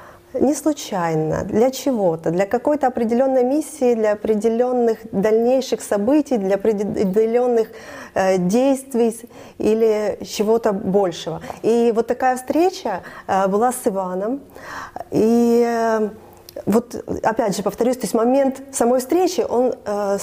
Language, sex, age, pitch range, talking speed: Russian, female, 20-39, 200-245 Hz, 120 wpm